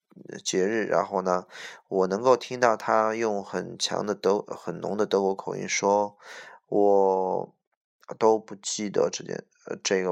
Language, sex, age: Chinese, male, 20-39